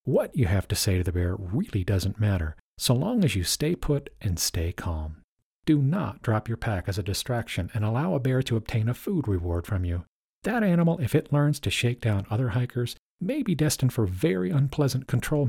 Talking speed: 215 wpm